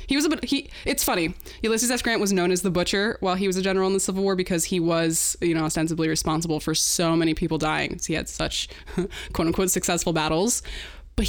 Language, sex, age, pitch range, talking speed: English, female, 20-39, 170-210 Hz, 230 wpm